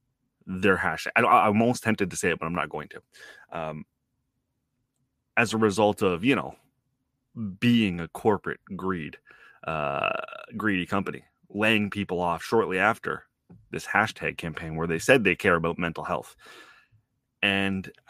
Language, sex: English, male